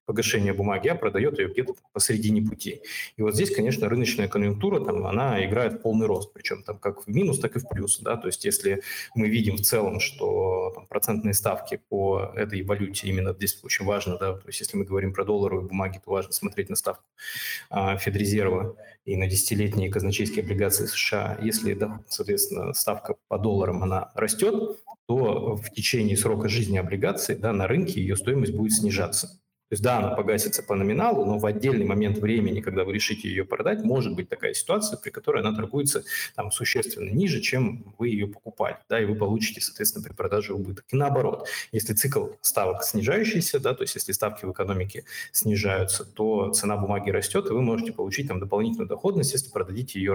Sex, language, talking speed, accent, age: male, Russian, 185 wpm, native, 20-39